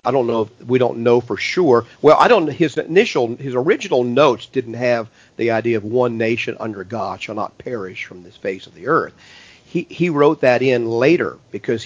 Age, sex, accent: 50-69, male, American